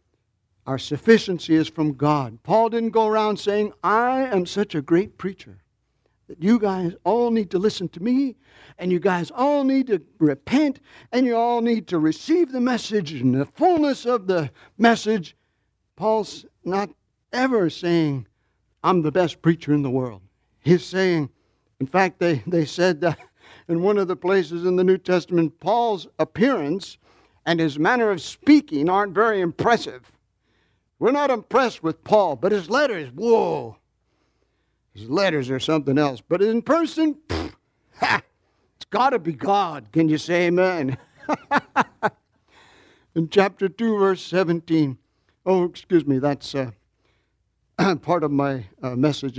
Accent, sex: American, male